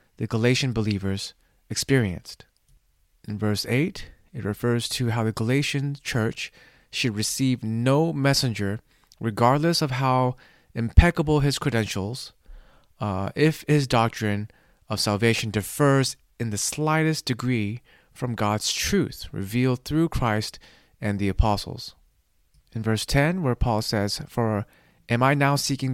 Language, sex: English, male